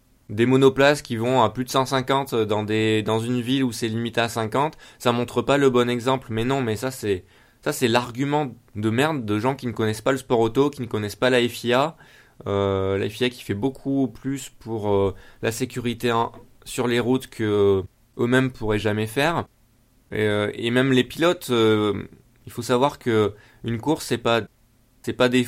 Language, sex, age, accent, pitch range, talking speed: French, male, 20-39, French, 110-130 Hz, 205 wpm